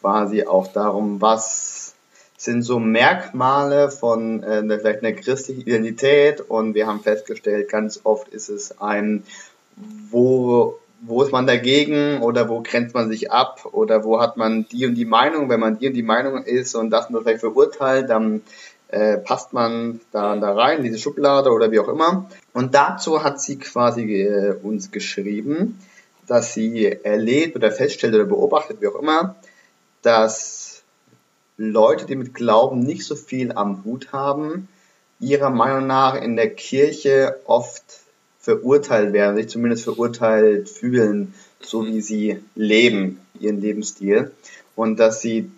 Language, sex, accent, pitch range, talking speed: German, male, German, 110-140 Hz, 155 wpm